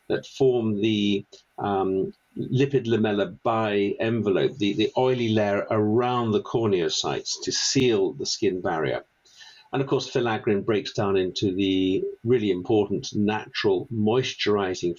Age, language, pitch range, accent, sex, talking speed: 50-69, English, 105-135 Hz, British, male, 130 wpm